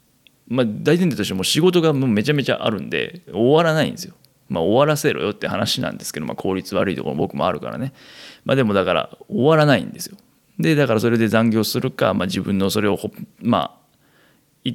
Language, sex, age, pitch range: Japanese, male, 20-39, 100-150 Hz